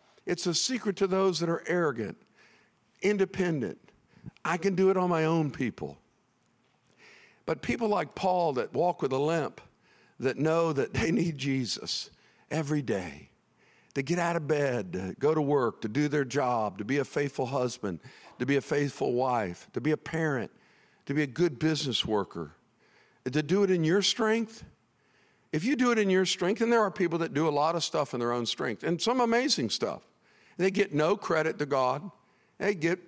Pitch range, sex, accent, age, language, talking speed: 140-185 Hz, male, American, 50-69, English, 190 wpm